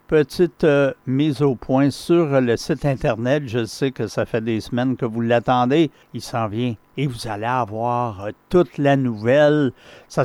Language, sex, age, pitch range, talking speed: French, male, 60-79, 115-140 Hz, 175 wpm